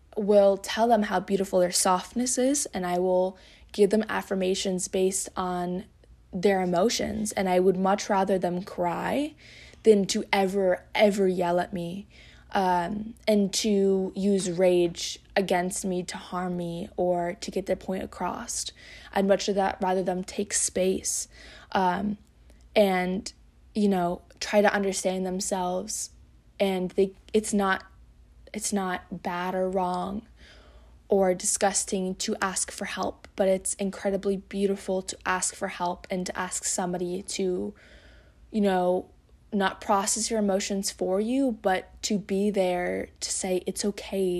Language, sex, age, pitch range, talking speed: English, female, 20-39, 180-200 Hz, 145 wpm